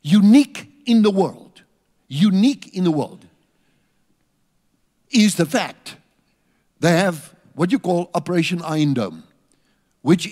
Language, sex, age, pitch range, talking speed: English, male, 60-79, 140-185 Hz, 115 wpm